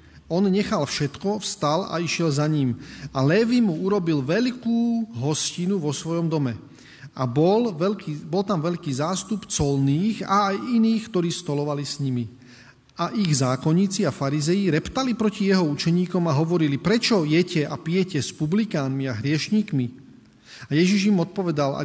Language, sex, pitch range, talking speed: Slovak, male, 135-185 Hz, 155 wpm